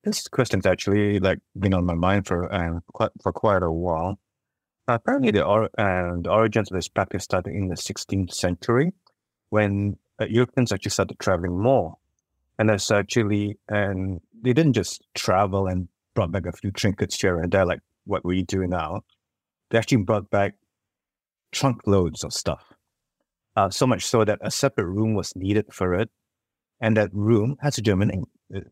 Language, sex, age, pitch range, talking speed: English, male, 30-49, 95-110 Hz, 185 wpm